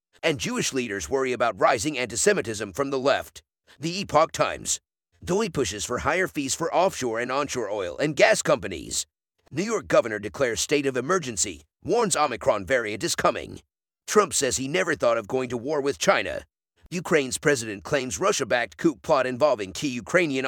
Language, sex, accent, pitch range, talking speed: English, male, American, 105-150 Hz, 170 wpm